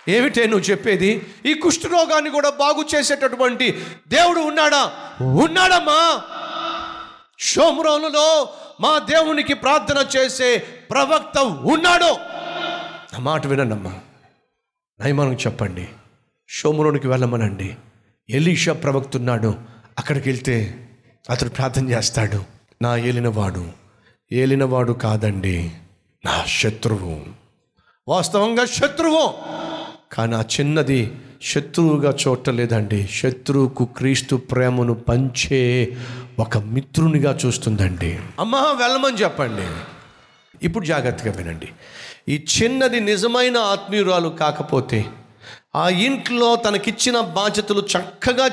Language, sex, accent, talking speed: Telugu, male, native, 85 wpm